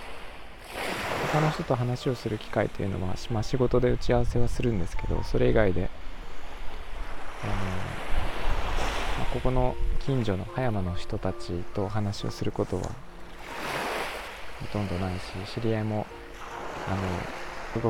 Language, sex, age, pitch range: Japanese, male, 20-39, 90-115 Hz